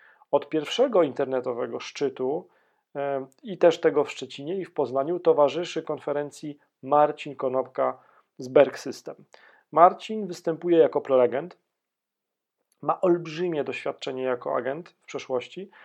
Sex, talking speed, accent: male, 115 wpm, native